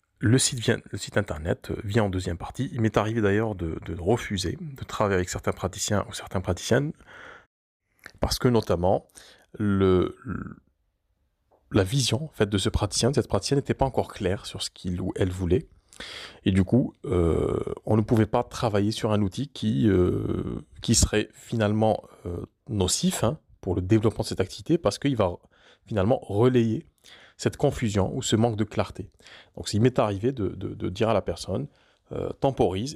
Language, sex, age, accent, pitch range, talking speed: French, male, 30-49, French, 95-120 Hz, 180 wpm